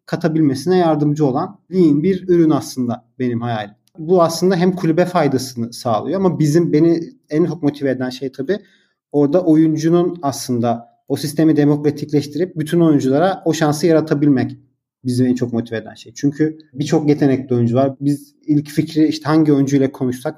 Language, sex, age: Turkish, male, 40-59